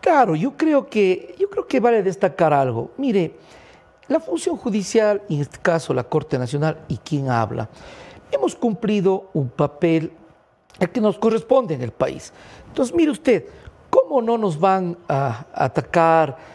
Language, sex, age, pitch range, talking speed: English, male, 50-69, 150-215 Hz, 150 wpm